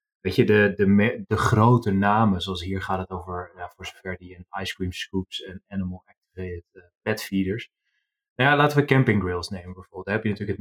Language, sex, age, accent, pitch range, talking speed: Dutch, male, 30-49, Dutch, 95-120 Hz, 215 wpm